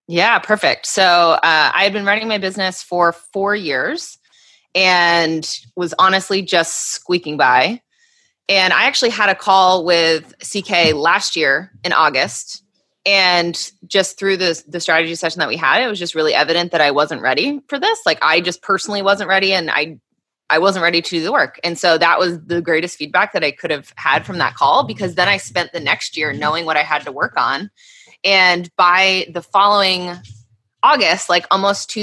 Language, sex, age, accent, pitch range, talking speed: English, female, 20-39, American, 160-195 Hz, 195 wpm